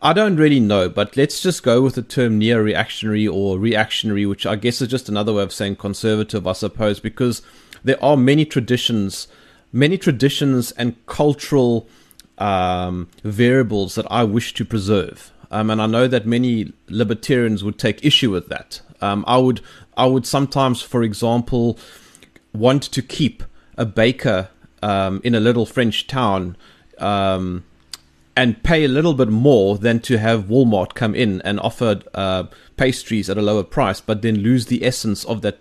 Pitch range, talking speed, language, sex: 105-130 Hz, 170 wpm, English, male